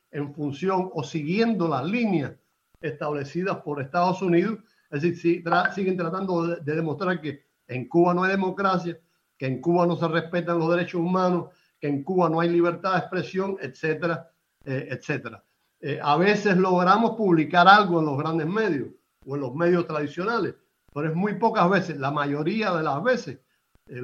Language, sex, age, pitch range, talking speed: Portuguese, male, 60-79, 150-195 Hz, 170 wpm